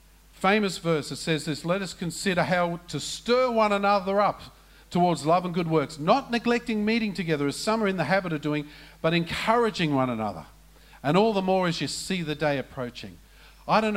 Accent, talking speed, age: Australian, 200 wpm, 50-69